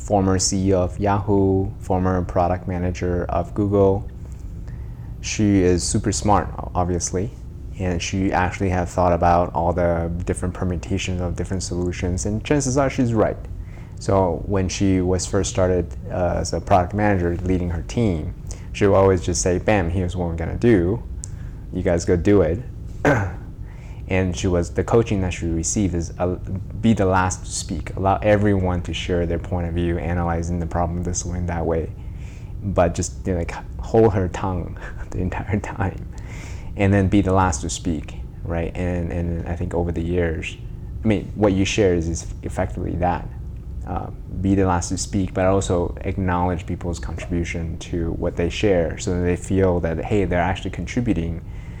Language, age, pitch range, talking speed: English, 20-39, 85-100 Hz, 175 wpm